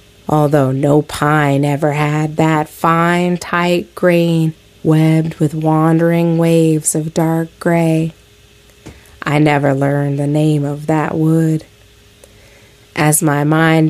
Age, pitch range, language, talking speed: 30-49, 145-165 Hz, English, 115 wpm